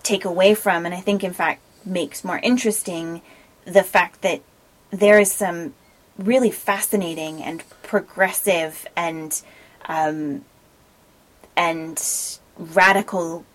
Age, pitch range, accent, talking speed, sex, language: 20-39, 165-200 Hz, American, 110 wpm, female, English